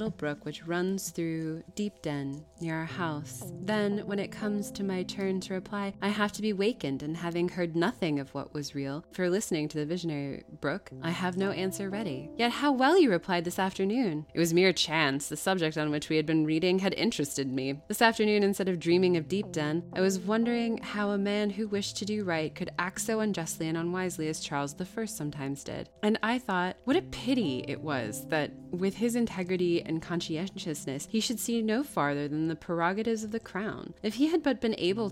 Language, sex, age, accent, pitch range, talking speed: English, female, 20-39, American, 155-205 Hz, 220 wpm